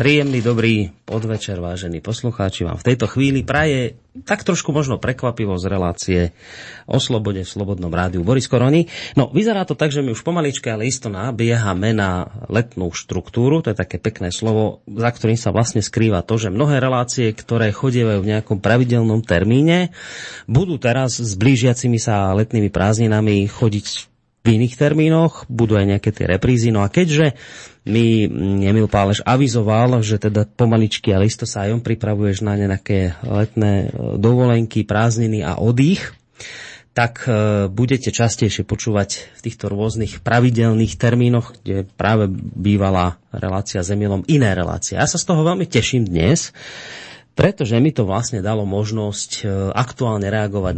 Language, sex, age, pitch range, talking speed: Slovak, male, 30-49, 100-125 Hz, 150 wpm